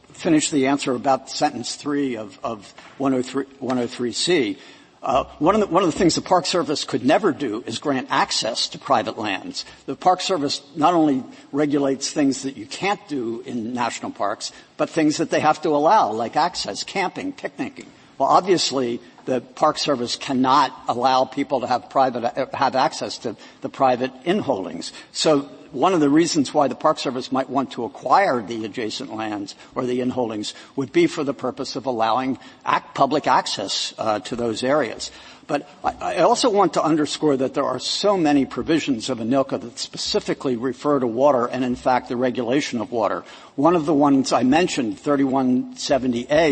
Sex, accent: male, American